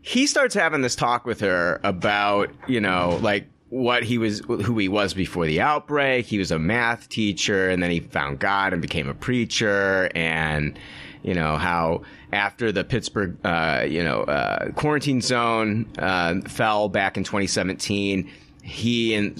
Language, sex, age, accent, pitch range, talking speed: English, male, 30-49, American, 95-120 Hz, 160 wpm